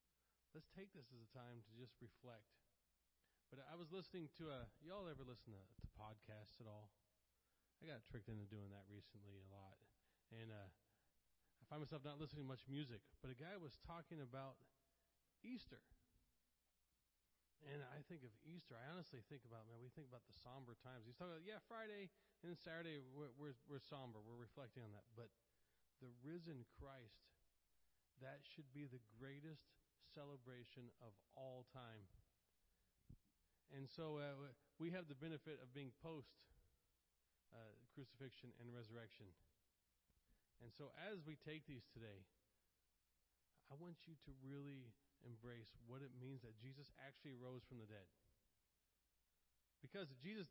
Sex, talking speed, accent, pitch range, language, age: male, 160 wpm, American, 105-145 Hz, English, 40-59